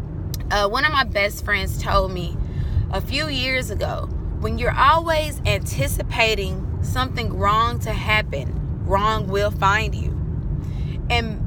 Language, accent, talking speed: English, American, 130 wpm